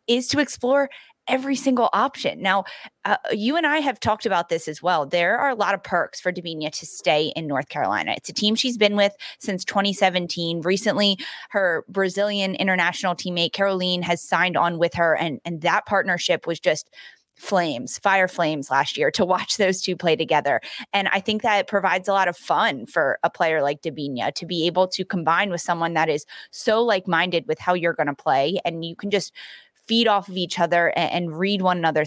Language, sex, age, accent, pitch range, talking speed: English, female, 20-39, American, 170-210 Hz, 210 wpm